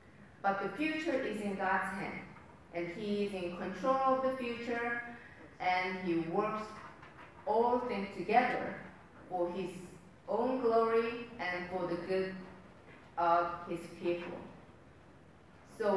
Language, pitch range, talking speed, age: English, 185-235 Hz, 125 wpm, 40-59